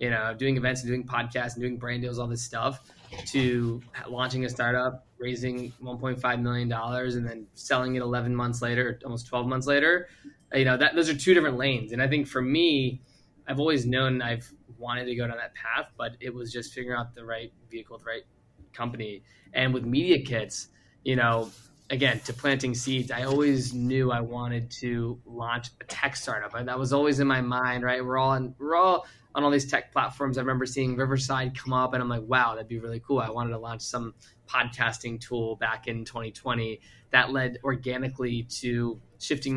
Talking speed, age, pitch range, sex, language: 200 wpm, 20-39, 120-135 Hz, male, English